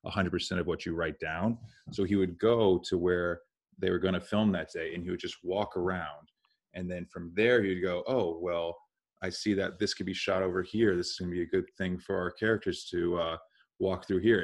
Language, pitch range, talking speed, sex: English, 90-100 Hz, 235 wpm, male